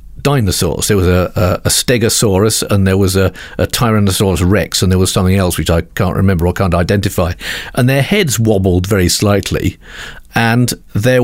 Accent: British